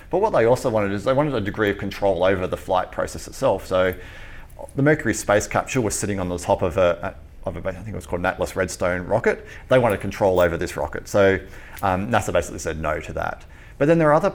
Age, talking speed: 30-49, 245 wpm